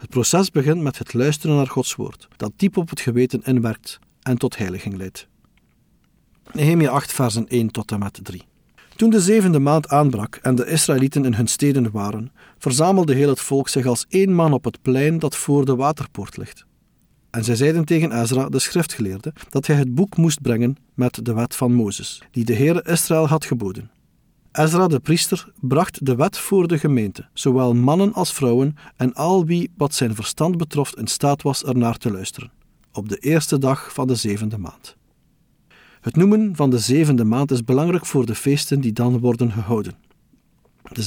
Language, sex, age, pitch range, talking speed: Dutch, male, 50-69, 120-155 Hz, 190 wpm